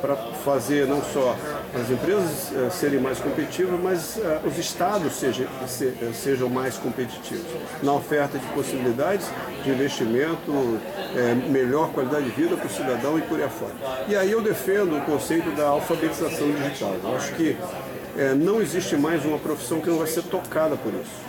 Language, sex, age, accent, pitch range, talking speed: Portuguese, male, 50-69, Brazilian, 130-165 Hz, 160 wpm